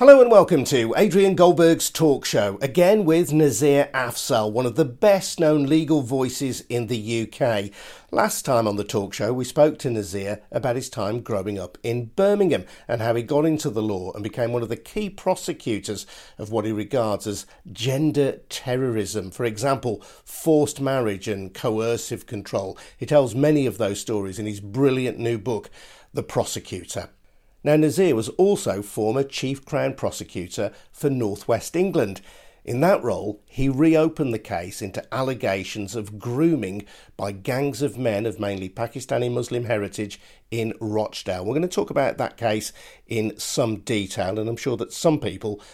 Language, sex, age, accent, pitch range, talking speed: English, male, 50-69, British, 105-145 Hz, 170 wpm